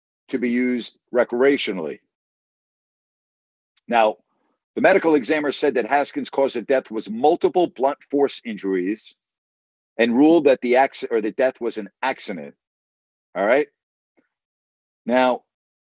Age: 50-69